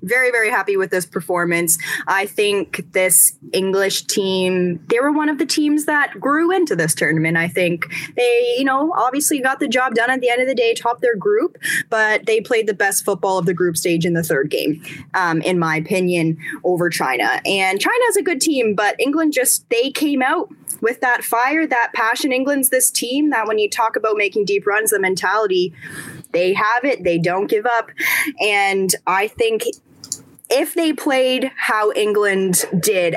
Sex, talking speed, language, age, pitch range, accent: female, 190 wpm, English, 10-29, 180-270 Hz, American